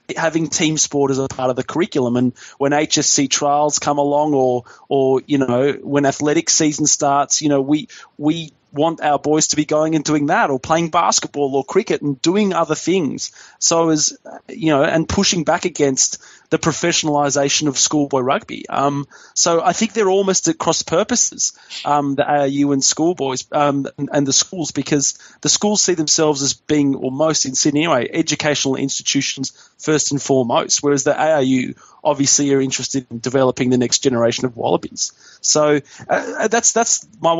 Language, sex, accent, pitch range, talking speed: English, male, Australian, 140-170 Hz, 180 wpm